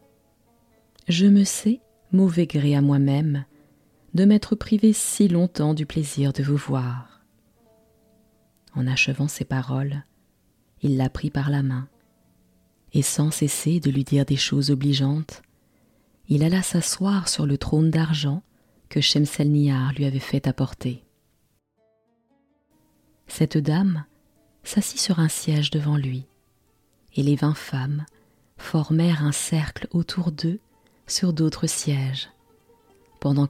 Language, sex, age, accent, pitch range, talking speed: French, female, 30-49, French, 135-160 Hz, 125 wpm